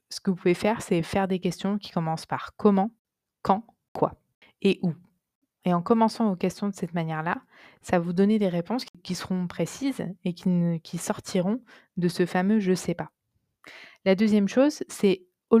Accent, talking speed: French, 225 wpm